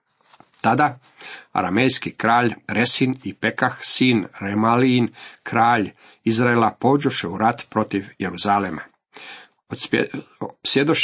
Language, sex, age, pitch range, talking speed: Croatian, male, 50-69, 110-140 Hz, 85 wpm